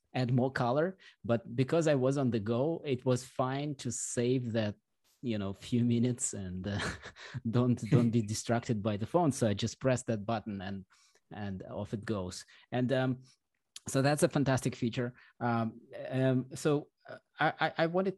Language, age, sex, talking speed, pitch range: English, 20-39, male, 175 wpm, 110-135 Hz